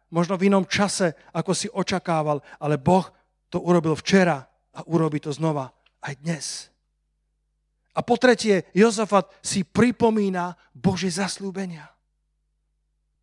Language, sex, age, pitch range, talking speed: Slovak, male, 40-59, 145-195 Hz, 120 wpm